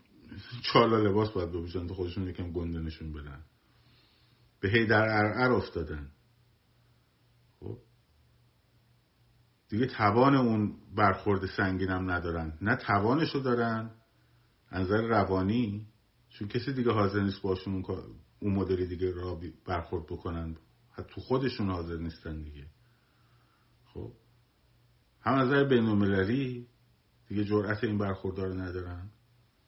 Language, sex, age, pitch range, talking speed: Persian, male, 50-69, 95-120 Hz, 115 wpm